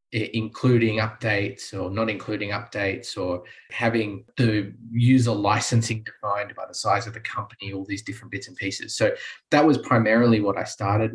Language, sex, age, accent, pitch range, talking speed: English, male, 20-39, Australian, 105-120 Hz, 165 wpm